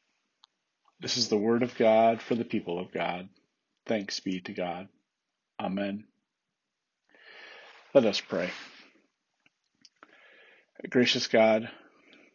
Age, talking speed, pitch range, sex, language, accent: 40-59, 100 wpm, 100-120 Hz, male, English, American